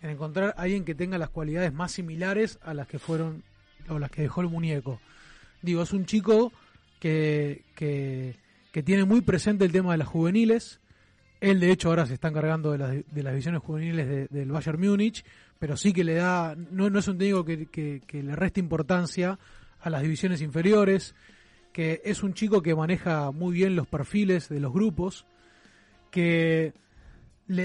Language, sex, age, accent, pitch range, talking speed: Spanish, male, 30-49, Argentinian, 155-195 Hz, 190 wpm